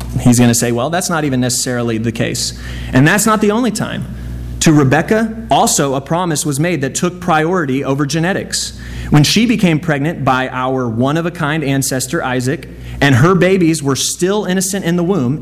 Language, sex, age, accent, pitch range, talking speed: English, male, 30-49, American, 125-165 Hz, 185 wpm